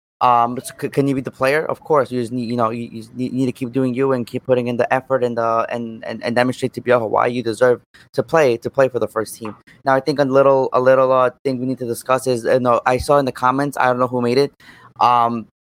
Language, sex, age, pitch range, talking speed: English, male, 20-39, 120-135 Hz, 280 wpm